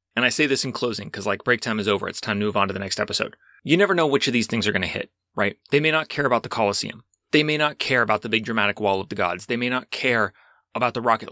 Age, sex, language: 30-49, male, English